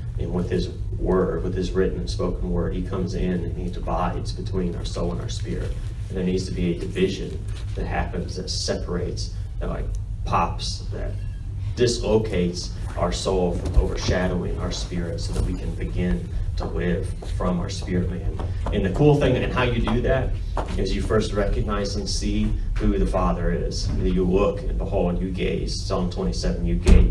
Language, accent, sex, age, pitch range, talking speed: English, American, male, 30-49, 90-100 Hz, 190 wpm